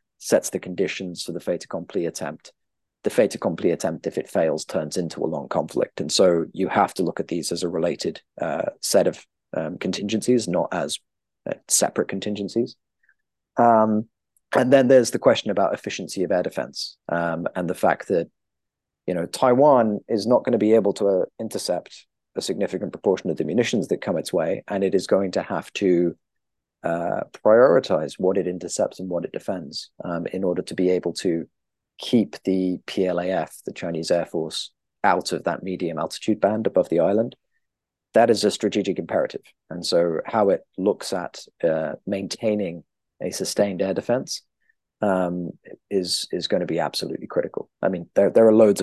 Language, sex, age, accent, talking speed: English, male, 30-49, British, 185 wpm